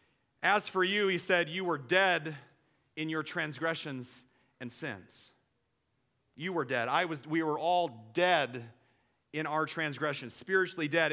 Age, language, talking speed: 30-49, English, 145 wpm